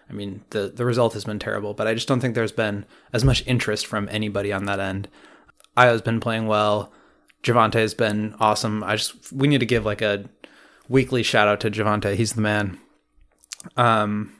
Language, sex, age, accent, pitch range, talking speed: English, male, 20-39, American, 105-125 Hz, 195 wpm